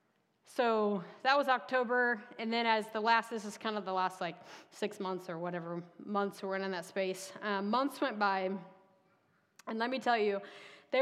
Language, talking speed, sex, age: English, 195 wpm, female, 30-49